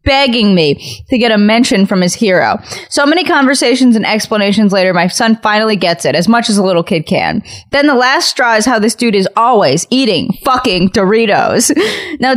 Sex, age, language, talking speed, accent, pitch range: female, 10-29, English, 200 wpm, American, 185-245 Hz